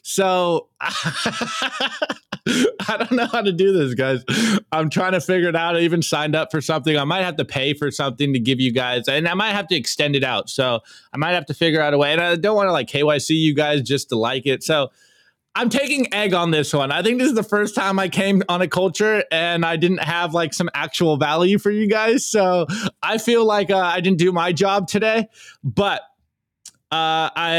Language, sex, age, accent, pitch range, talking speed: English, male, 20-39, American, 125-180 Hz, 230 wpm